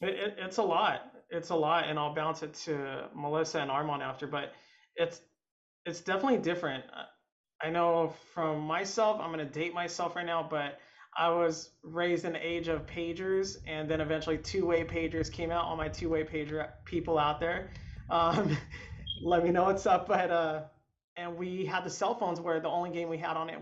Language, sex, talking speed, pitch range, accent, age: English, male, 200 wpm, 150-180 Hz, American, 30-49